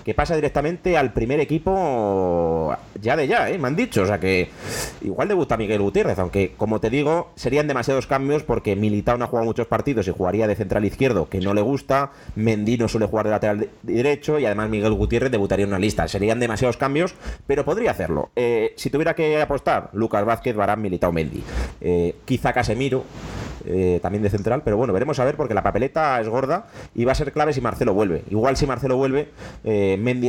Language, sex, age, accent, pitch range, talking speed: Spanish, male, 30-49, Spanish, 105-145 Hz, 210 wpm